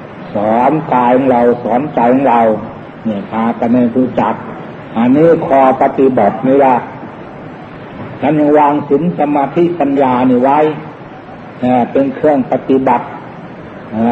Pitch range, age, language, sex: 125-155 Hz, 60-79, Thai, male